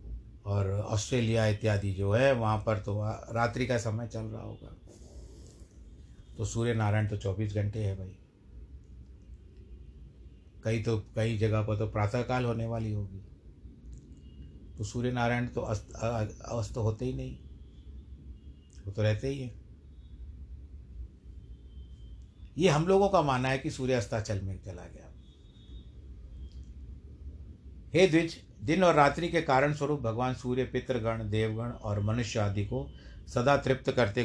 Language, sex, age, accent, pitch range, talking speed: Hindi, male, 60-79, native, 85-125 Hz, 140 wpm